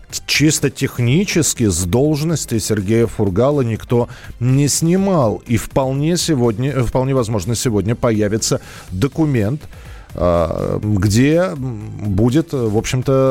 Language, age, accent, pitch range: Russian, 40-59, native, 105-145 Hz